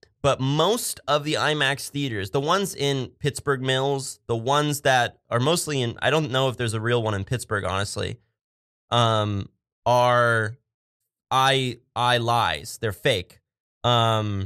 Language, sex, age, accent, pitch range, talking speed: English, male, 20-39, American, 105-135 Hz, 150 wpm